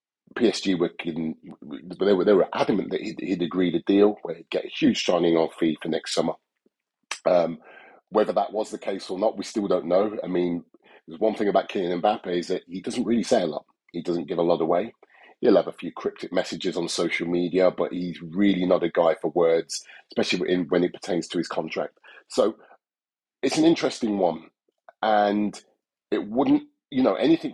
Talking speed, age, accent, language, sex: 205 wpm, 30-49, British, English, male